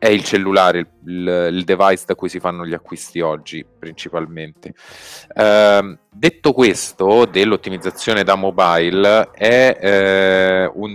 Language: Italian